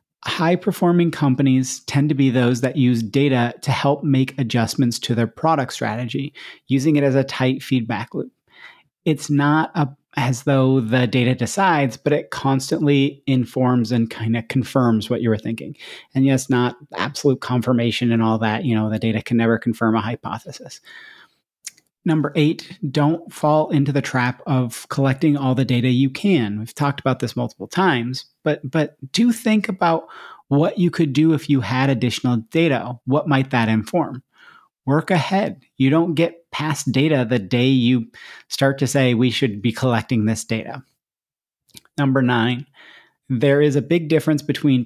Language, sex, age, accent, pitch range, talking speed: English, male, 30-49, American, 120-145 Hz, 165 wpm